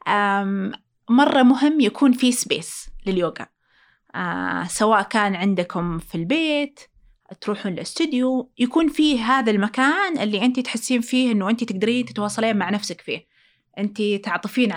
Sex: female